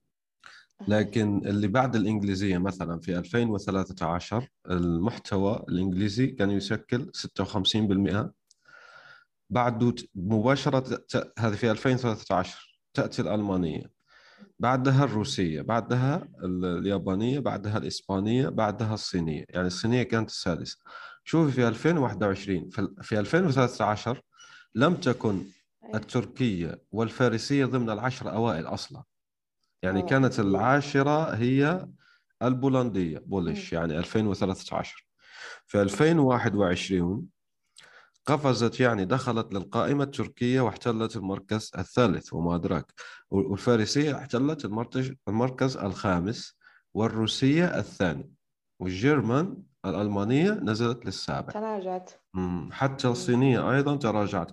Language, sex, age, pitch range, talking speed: Arabic, male, 30-49, 100-130 Hz, 90 wpm